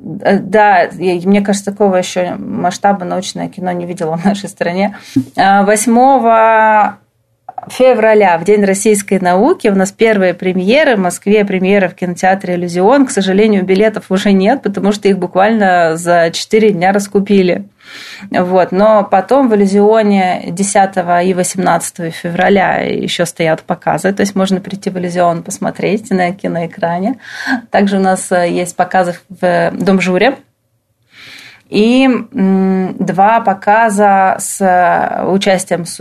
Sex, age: female, 20-39